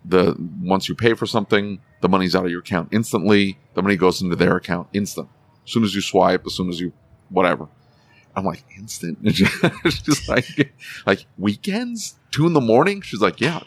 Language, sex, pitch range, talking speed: English, male, 95-120 Hz, 195 wpm